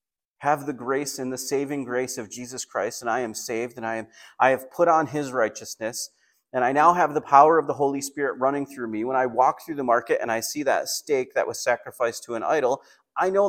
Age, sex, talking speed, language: 30-49, male, 245 wpm, English